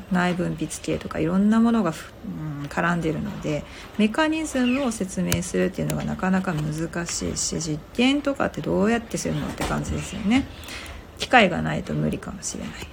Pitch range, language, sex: 175-250 Hz, Japanese, female